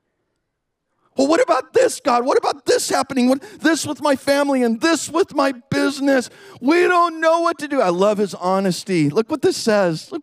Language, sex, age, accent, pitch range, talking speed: English, male, 40-59, American, 180-285 Hz, 200 wpm